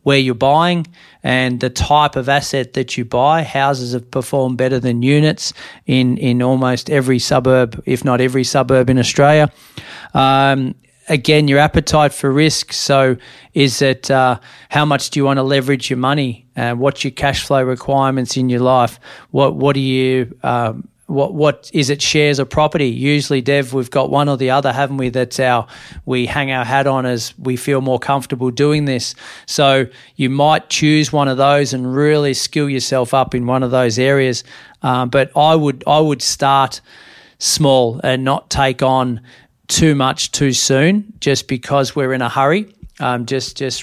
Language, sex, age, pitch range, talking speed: English, male, 40-59, 125-140 Hz, 185 wpm